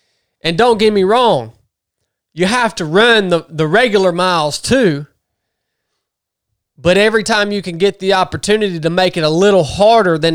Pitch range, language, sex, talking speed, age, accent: 120-180 Hz, English, male, 170 wpm, 20-39, American